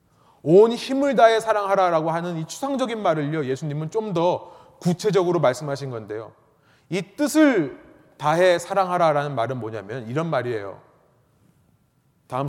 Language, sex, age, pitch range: Korean, male, 30-49, 140-195 Hz